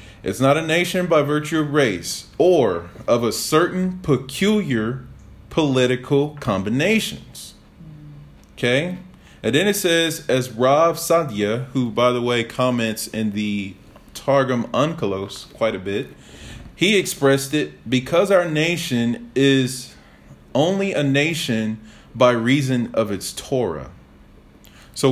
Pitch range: 115-160 Hz